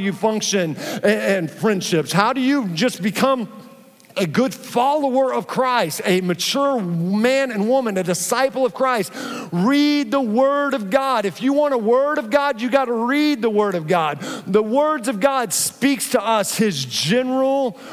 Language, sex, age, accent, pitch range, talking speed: English, male, 50-69, American, 185-250 Hz, 170 wpm